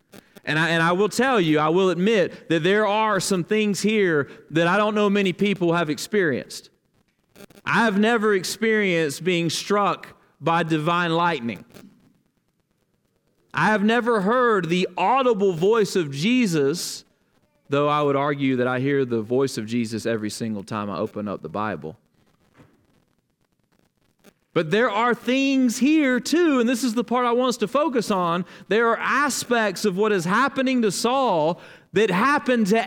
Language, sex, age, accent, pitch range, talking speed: English, male, 40-59, American, 140-215 Hz, 160 wpm